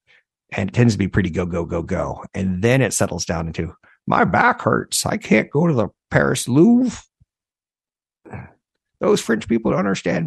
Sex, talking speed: male, 180 wpm